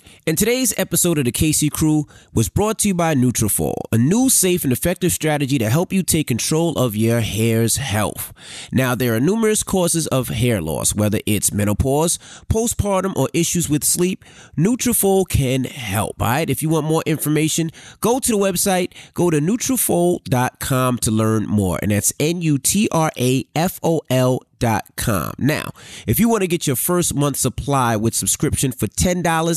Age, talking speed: 30-49, 175 wpm